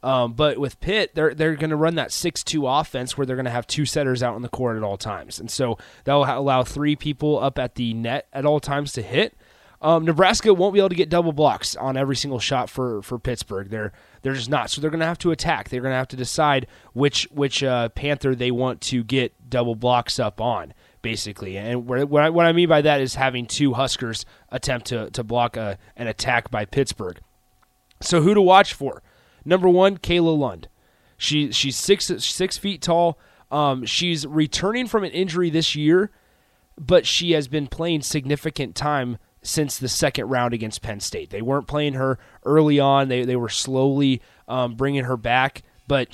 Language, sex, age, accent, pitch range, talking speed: English, male, 30-49, American, 120-155 Hz, 210 wpm